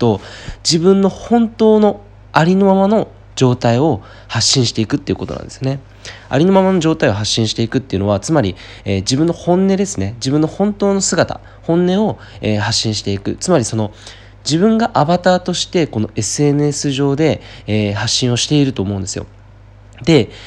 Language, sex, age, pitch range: Japanese, male, 20-39, 100-160 Hz